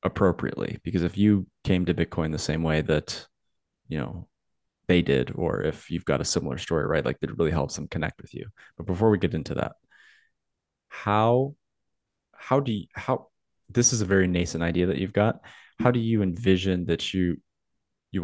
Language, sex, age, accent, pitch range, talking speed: English, male, 20-39, American, 85-95 Hz, 190 wpm